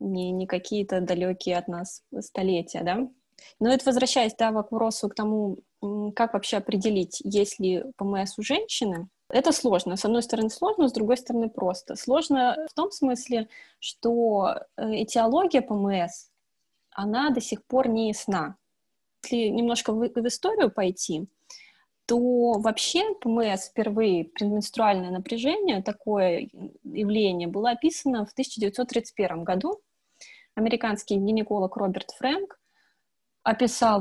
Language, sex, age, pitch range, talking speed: Russian, female, 20-39, 200-255 Hz, 125 wpm